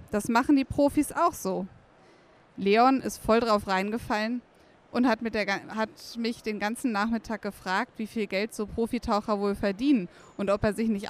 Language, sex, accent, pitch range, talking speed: German, female, German, 195-230 Hz, 180 wpm